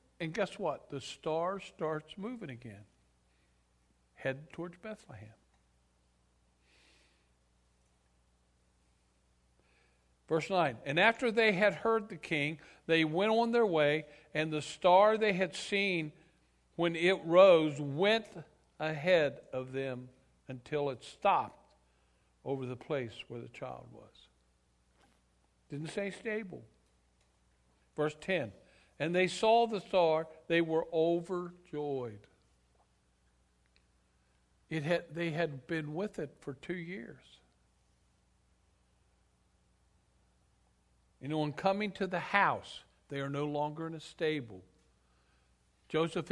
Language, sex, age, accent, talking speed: English, male, 60-79, American, 110 wpm